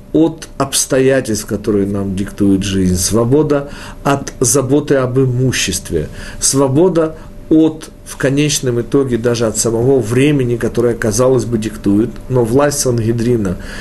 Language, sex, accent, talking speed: Russian, male, native, 115 wpm